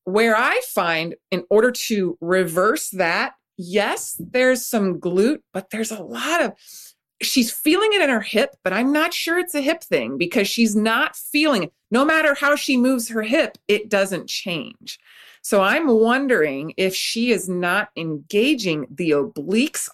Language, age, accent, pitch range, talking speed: English, 30-49, American, 180-260 Hz, 170 wpm